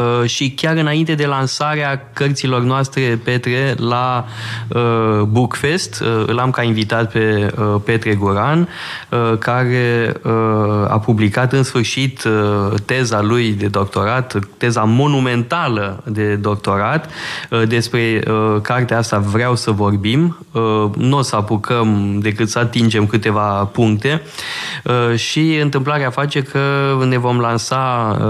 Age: 20-39